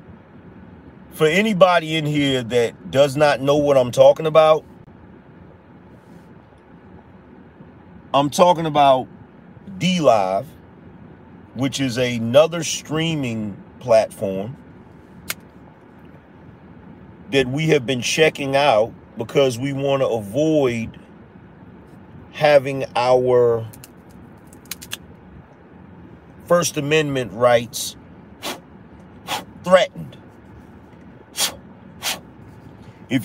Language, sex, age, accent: English, male, 40-59, American